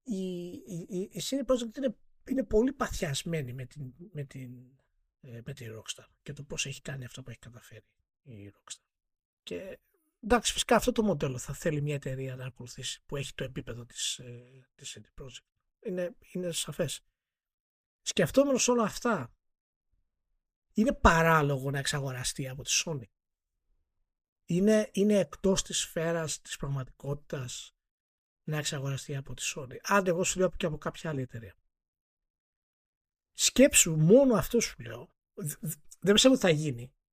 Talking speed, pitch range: 140 wpm, 130-200 Hz